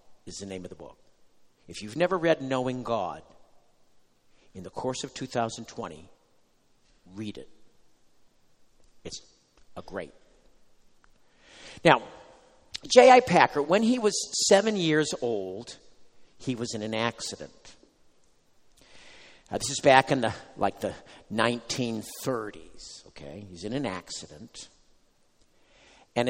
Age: 50-69